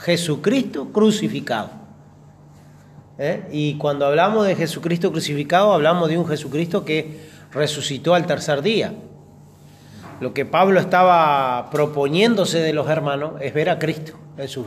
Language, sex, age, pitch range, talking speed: Spanish, male, 30-49, 140-180 Hz, 130 wpm